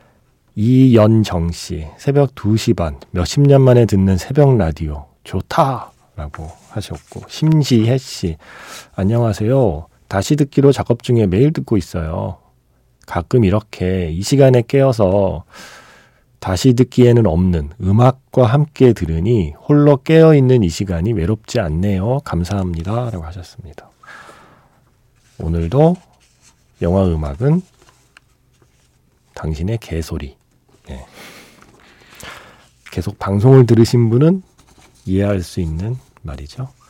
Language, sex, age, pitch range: Korean, male, 40-59, 85-130 Hz